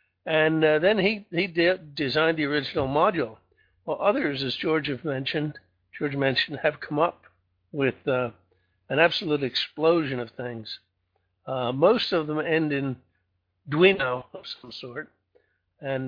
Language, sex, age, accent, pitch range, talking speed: English, male, 60-79, American, 125-150 Hz, 150 wpm